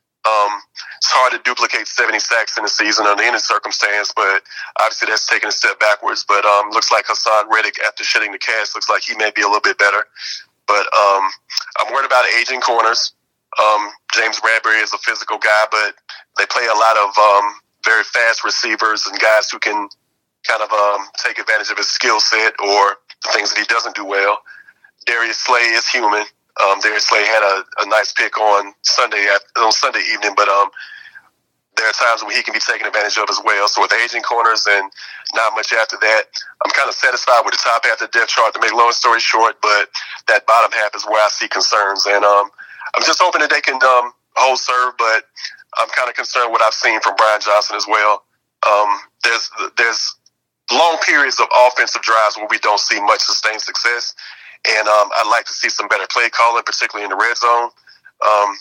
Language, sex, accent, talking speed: English, male, American, 210 wpm